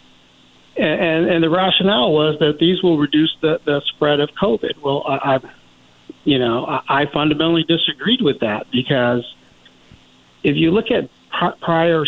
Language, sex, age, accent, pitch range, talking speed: English, male, 50-69, American, 130-165 Hz, 150 wpm